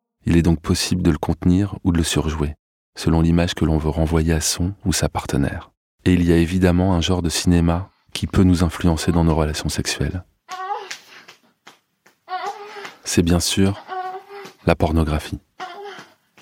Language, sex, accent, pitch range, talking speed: French, male, French, 80-95 Hz, 160 wpm